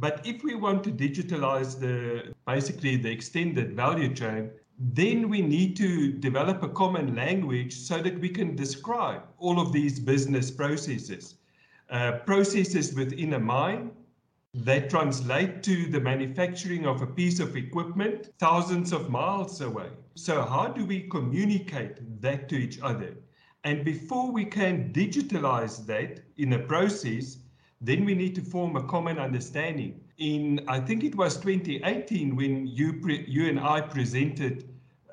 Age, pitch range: 50-69, 130-185 Hz